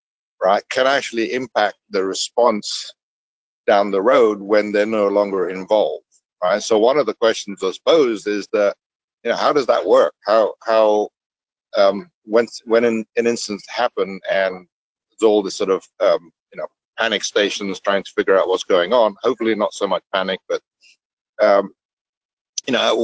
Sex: male